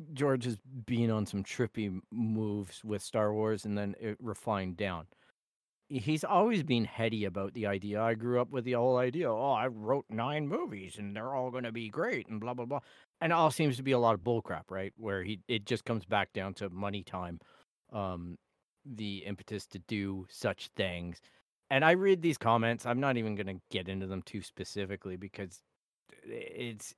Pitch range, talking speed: 100-130 Hz, 200 wpm